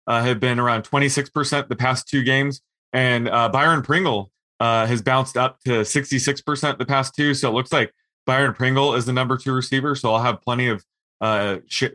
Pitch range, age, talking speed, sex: 120-140 Hz, 20-39, 195 wpm, male